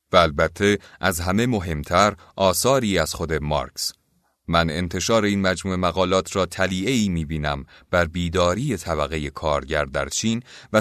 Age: 30-49